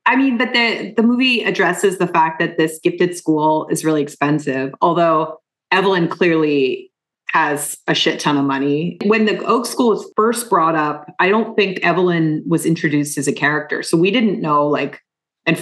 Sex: female